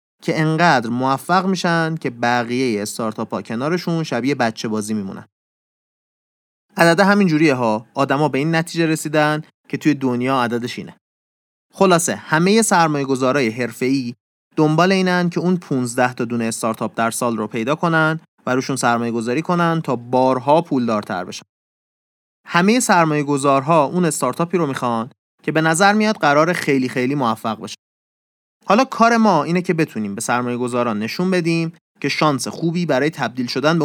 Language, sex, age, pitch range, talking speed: Persian, male, 30-49, 120-170 Hz, 155 wpm